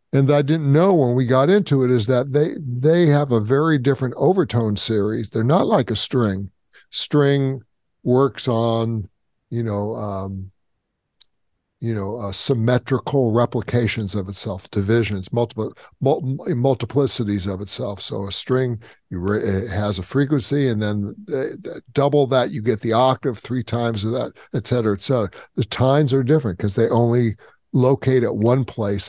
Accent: American